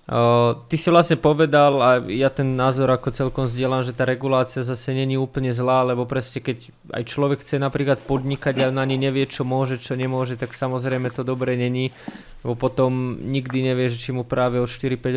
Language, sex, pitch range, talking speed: Slovak, male, 125-140 Hz, 190 wpm